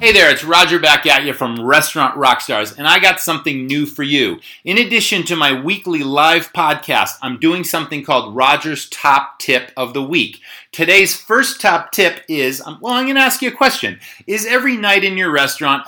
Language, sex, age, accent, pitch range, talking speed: English, male, 30-49, American, 140-205 Hz, 200 wpm